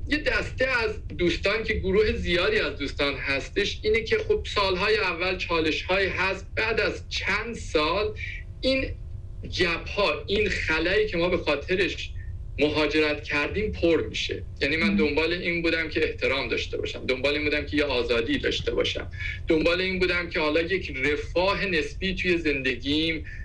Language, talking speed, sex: Persian, 155 wpm, male